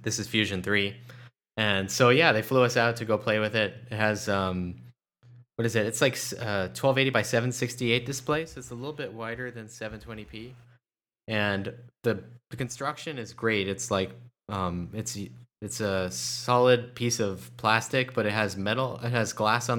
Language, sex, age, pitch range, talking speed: English, male, 20-39, 105-125 Hz, 195 wpm